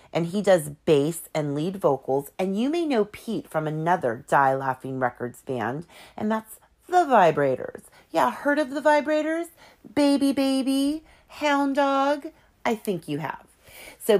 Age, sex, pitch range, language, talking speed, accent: 40-59, female, 145-230 Hz, English, 150 wpm, American